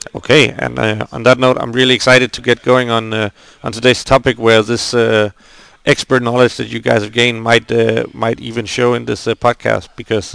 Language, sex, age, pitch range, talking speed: Finnish, male, 40-59, 110-125 Hz, 215 wpm